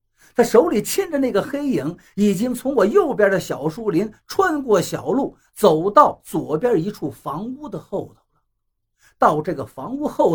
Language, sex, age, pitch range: Chinese, male, 50-69, 145-245 Hz